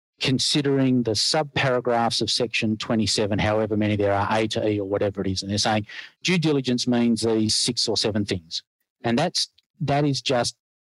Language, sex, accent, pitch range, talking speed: English, male, Australian, 110-130 Hz, 185 wpm